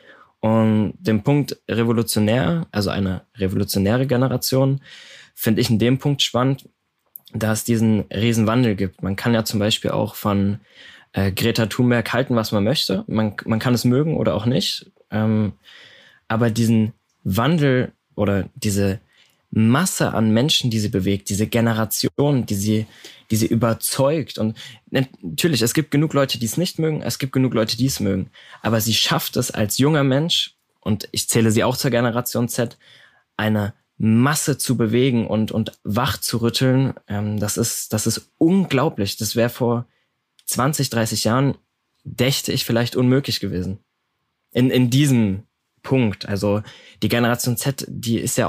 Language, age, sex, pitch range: German, 20-39, male, 110-130 Hz